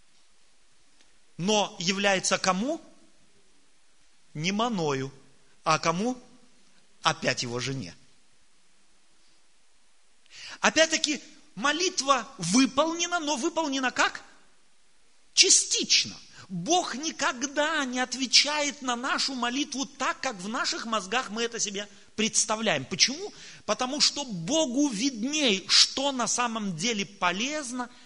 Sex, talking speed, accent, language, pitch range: male, 90 wpm, native, Russian, 200-300 Hz